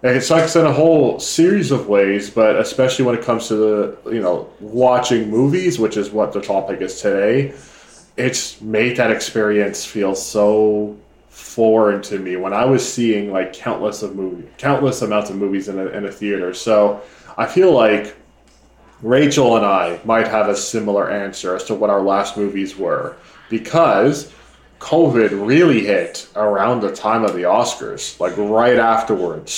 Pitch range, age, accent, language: 100-115 Hz, 20-39, American, English